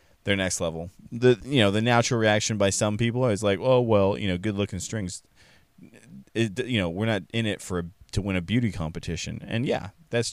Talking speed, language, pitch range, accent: 220 wpm, English, 90-115 Hz, American